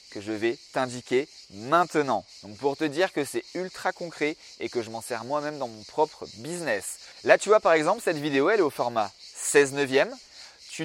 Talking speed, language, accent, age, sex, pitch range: 200 wpm, French, French, 30-49, male, 130-195 Hz